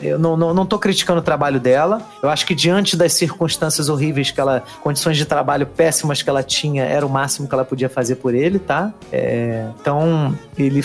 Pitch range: 145-190 Hz